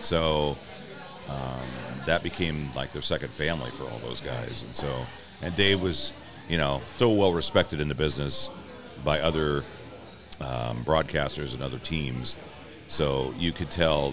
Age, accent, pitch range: 40-59, American, 70-85 Hz